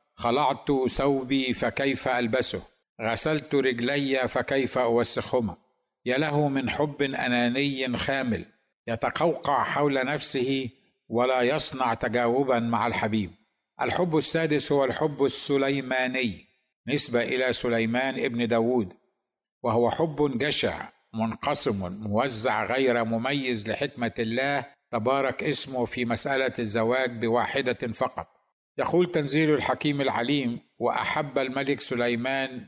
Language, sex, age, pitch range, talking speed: Arabic, male, 50-69, 120-140 Hz, 100 wpm